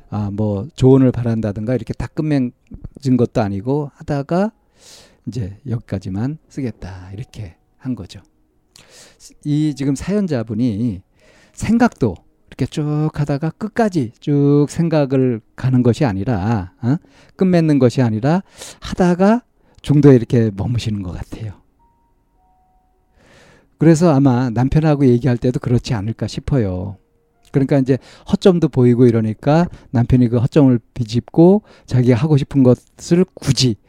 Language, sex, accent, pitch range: Korean, male, native, 110-145 Hz